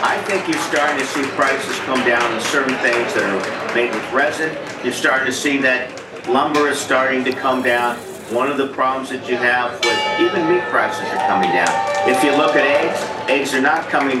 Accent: American